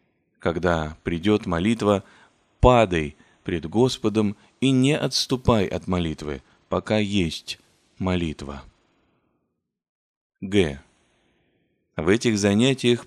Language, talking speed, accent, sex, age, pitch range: Russian, 85 wpm, native, male, 30-49, 90-115 Hz